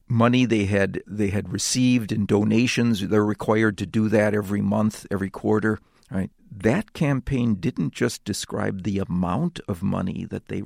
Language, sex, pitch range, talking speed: English, male, 100-125 Hz, 165 wpm